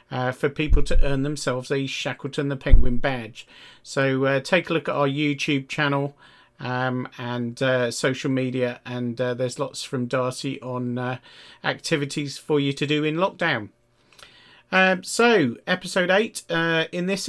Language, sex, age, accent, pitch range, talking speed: English, male, 40-59, British, 125-150 Hz, 165 wpm